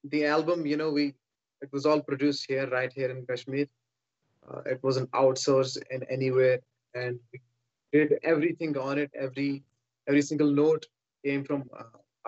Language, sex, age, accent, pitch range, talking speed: English, male, 20-39, Indian, 130-150 Hz, 160 wpm